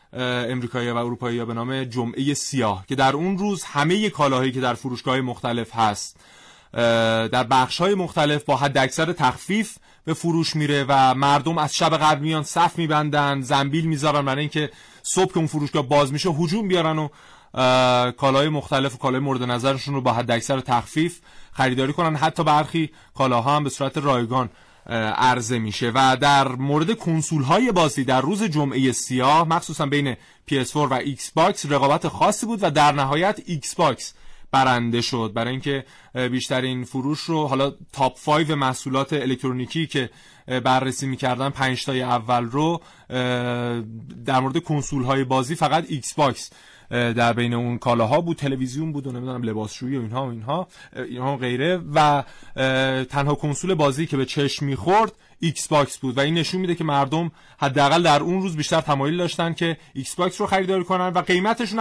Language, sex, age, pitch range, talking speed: Persian, male, 30-49, 130-155 Hz, 165 wpm